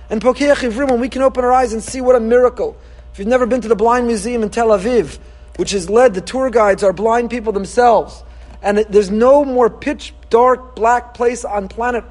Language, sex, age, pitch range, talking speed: English, male, 40-59, 215-270 Hz, 215 wpm